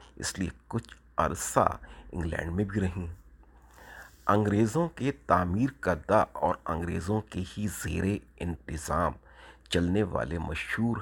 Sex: male